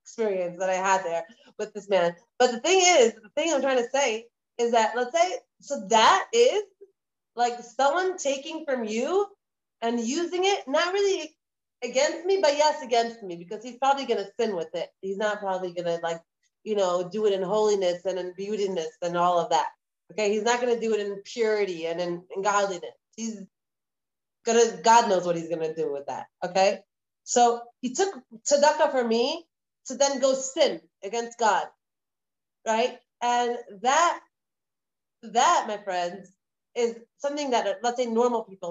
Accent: American